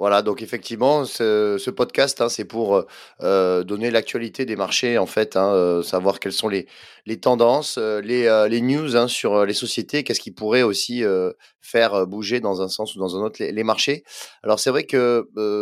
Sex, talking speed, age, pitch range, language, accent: male, 210 wpm, 30-49, 105-135 Hz, French, French